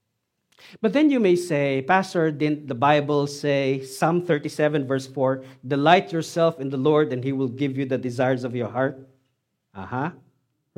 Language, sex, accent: English, male, Filipino